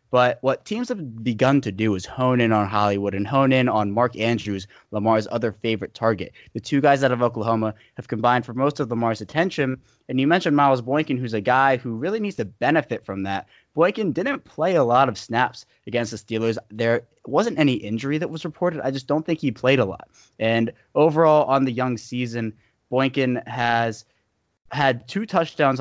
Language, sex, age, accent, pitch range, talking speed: English, male, 20-39, American, 110-135 Hz, 200 wpm